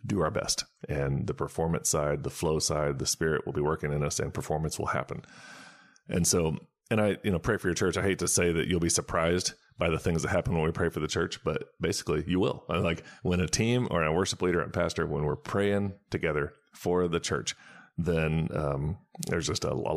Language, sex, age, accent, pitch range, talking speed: English, male, 30-49, American, 75-90 Hz, 230 wpm